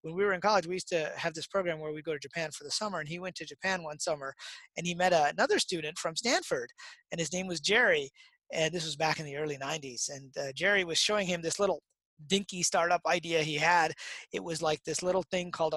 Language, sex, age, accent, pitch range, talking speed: English, male, 30-49, American, 160-215 Hz, 245 wpm